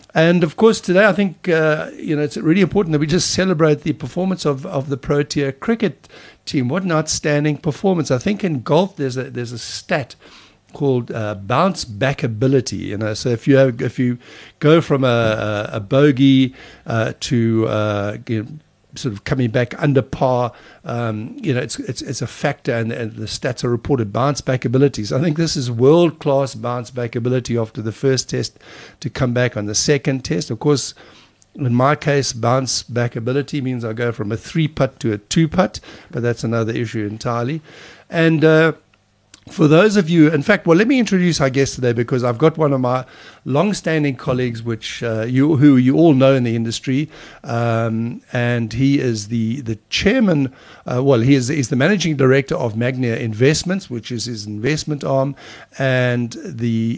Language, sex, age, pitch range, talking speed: English, male, 60-79, 120-155 Hz, 195 wpm